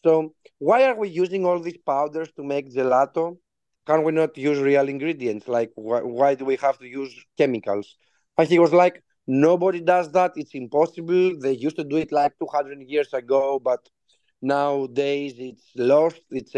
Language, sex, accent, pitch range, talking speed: Greek, male, Spanish, 125-165 Hz, 175 wpm